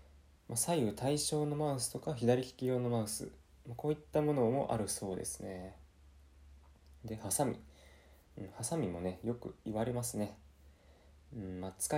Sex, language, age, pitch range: male, Japanese, 20-39, 75-120 Hz